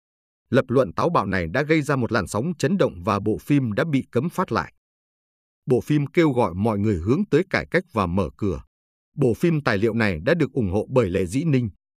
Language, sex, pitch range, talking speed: Vietnamese, male, 100-145 Hz, 235 wpm